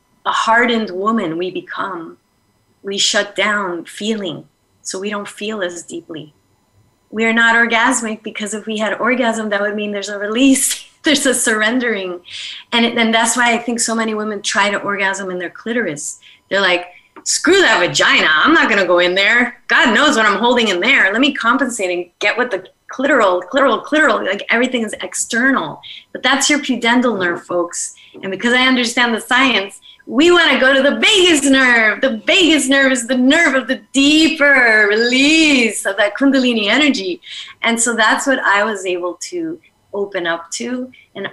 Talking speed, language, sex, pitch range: 185 wpm, English, female, 190-250 Hz